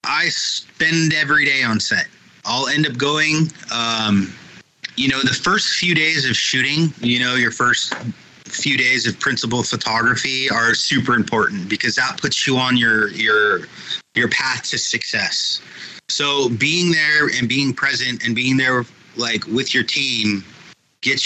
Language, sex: English, male